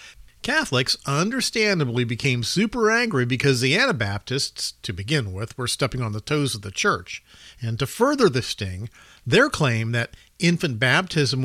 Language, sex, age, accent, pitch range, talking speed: English, male, 50-69, American, 125-195 Hz, 150 wpm